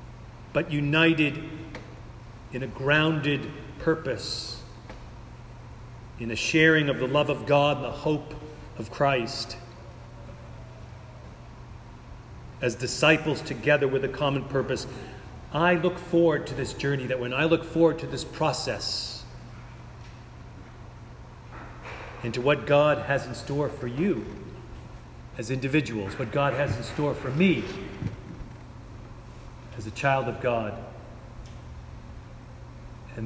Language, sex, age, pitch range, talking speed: English, male, 40-59, 115-150 Hz, 115 wpm